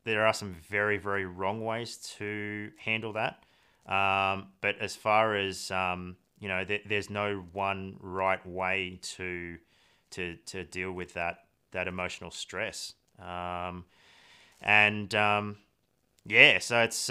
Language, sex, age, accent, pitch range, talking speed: English, male, 30-49, Australian, 90-105 Hz, 135 wpm